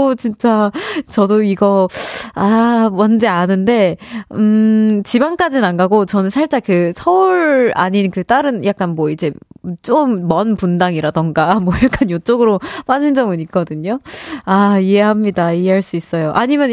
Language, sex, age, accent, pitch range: Korean, female, 20-39, native, 185-265 Hz